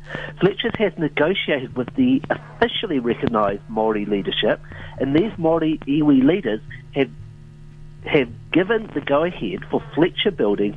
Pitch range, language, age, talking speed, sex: 125-175 Hz, English, 50-69, 125 wpm, male